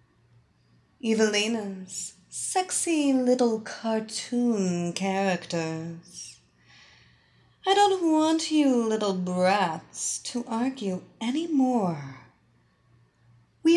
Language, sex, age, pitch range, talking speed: English, female, 30-49, 170-250 Hz, 70 wpm